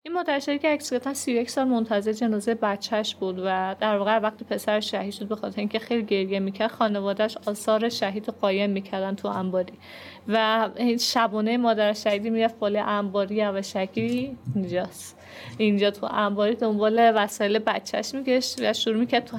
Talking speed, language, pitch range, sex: 150 wpm, Persian, 200-235 Hz, female